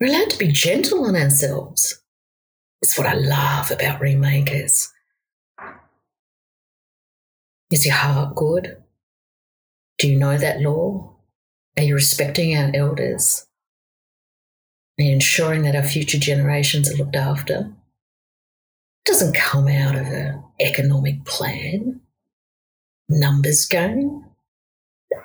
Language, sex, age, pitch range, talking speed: English, female, 50-69, 140-215 Hz, 115 wpm